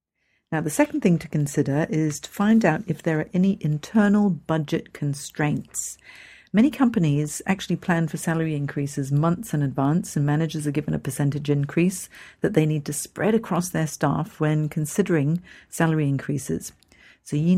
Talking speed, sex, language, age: 165 wpm, female, English, 50-69